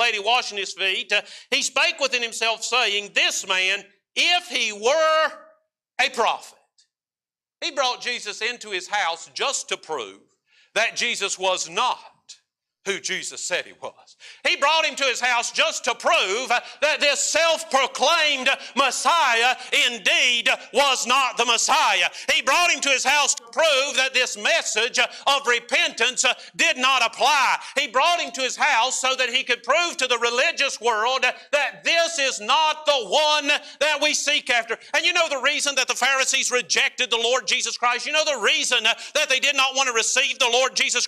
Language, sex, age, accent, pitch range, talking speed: English, male, 50-69, American, 230-280 Hz, 175 wpm